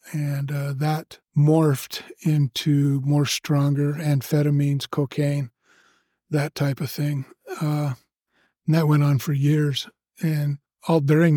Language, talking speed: English, 120 wpm